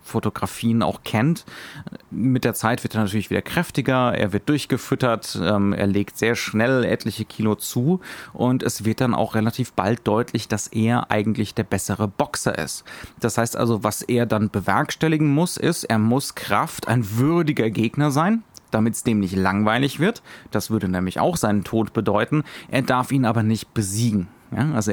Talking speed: 180 wpm